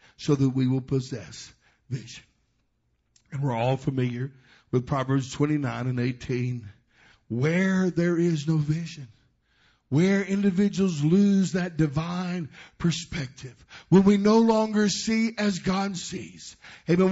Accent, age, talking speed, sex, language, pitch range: American, 60-79, 125 wpm, male, English, 135-185 Hz